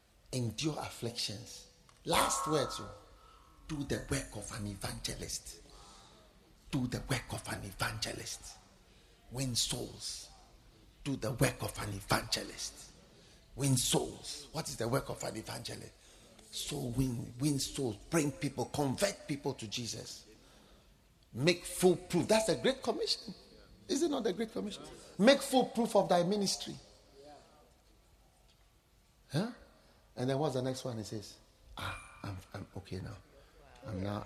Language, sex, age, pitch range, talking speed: English, male, 50-69, 110-165 Hz, 135 wpm